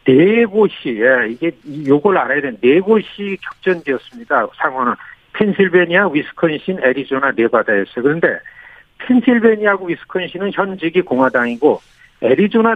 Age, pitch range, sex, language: 60-79, 145-215 Hz, male, Korean